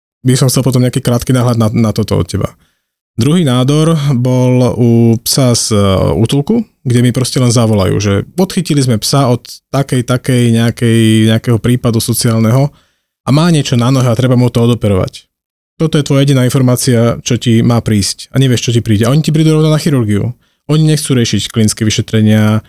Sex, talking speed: male, 185 wpm